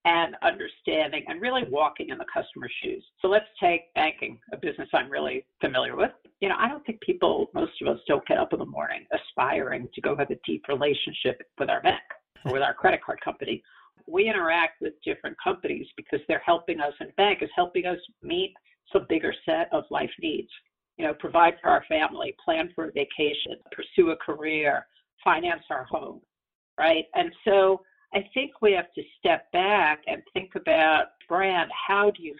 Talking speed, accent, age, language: 195 wpm, American, 50-69, English